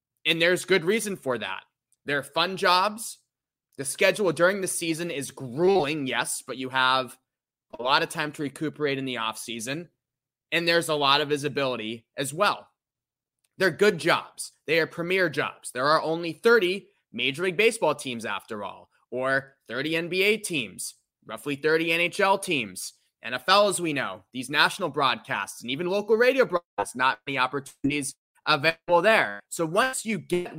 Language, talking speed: English, 165 wpm